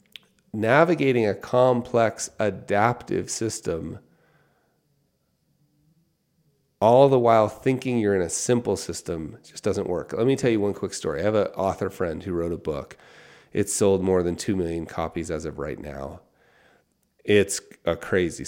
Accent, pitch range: American, 85-120 Hz